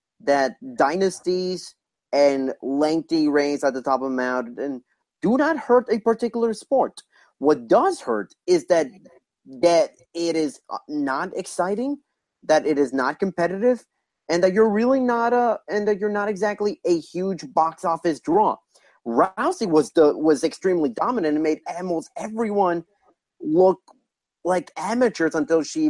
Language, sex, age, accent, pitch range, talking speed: English, male, 30-49, American, 155-230 Hz, 145 wpm